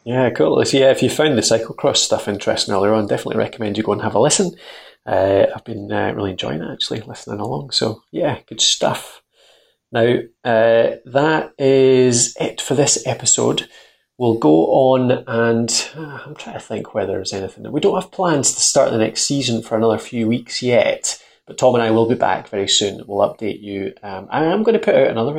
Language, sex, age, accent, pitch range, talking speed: English, male, 30-49, British, 105-125 Hz, 210 wpm